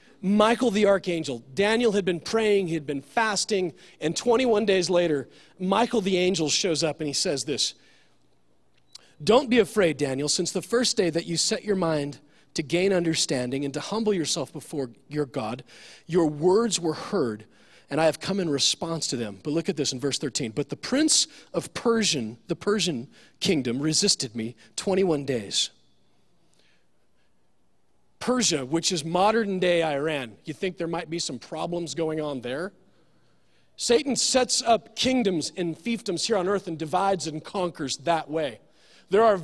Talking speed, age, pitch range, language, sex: 165 wpm, 40-59, 150-210 Hz, English, male